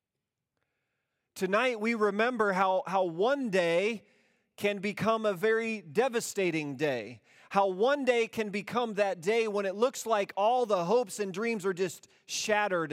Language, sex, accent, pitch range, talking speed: English, male, American, 185-255 Hz, 150 wpm